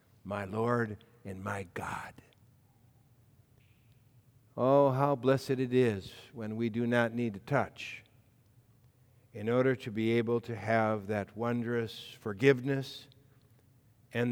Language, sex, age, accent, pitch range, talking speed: English, male, 60-79, American, 115-140 Hz, 115 wpm